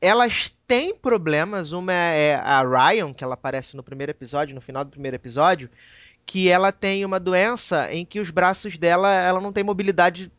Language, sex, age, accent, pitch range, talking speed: Portuguese, male, 20-39, Brazilian, 180-235 Hz, 185 wpm